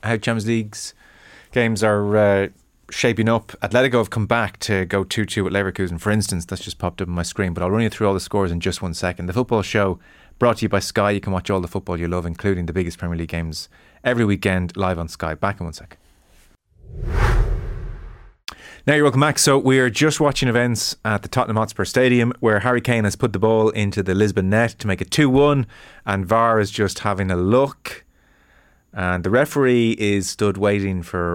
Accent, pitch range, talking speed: Irish, 85-110 Hz, 215 wpm